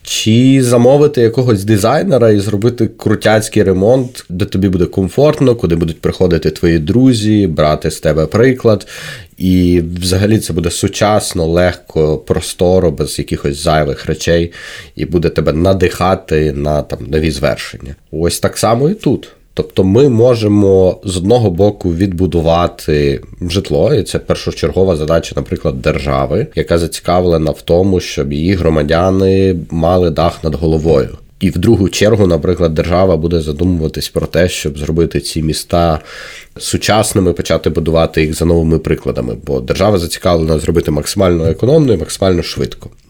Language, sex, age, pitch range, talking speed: Ukrainian, male, 30-49, 80-100 Hz, 140 wpm